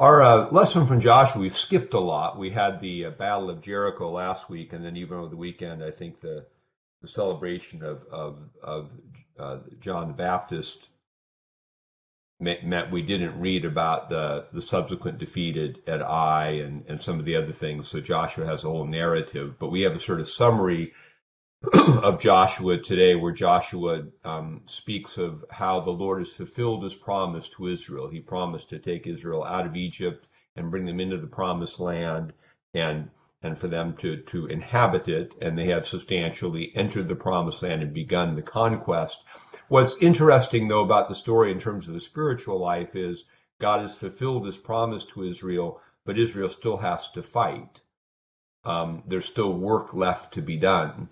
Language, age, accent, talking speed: English, 50-69, American, 180 wpm